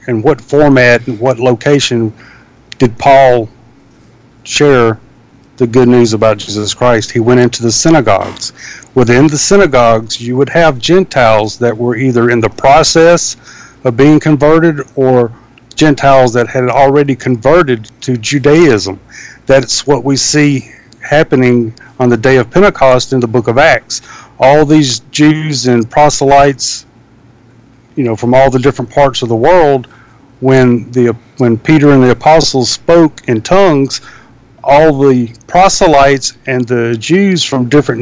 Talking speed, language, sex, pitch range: 145 wpm, English, male, 120-145 Hz